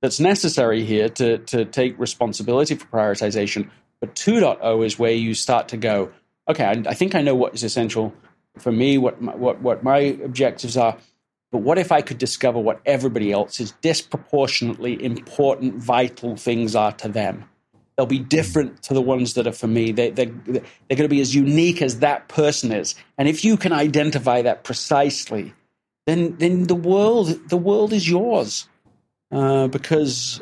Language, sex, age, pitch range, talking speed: English, male, 40-59, 120-150 Hz, 180 wpm